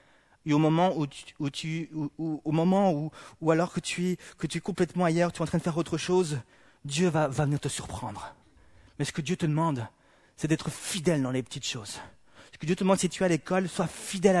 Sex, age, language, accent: male, 30-49, French, French